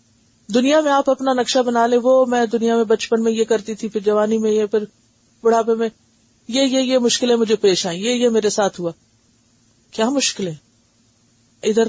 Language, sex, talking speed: Urdu, female, 190 wpm